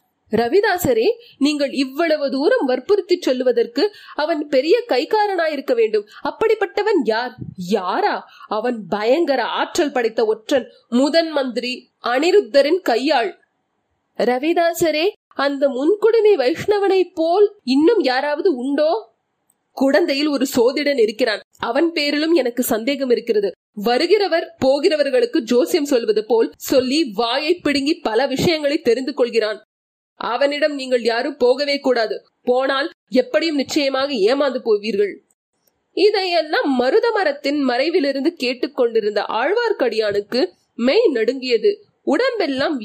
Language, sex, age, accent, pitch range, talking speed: Tamil, female, 30-49, native, 260-390 Hz, 85 wpm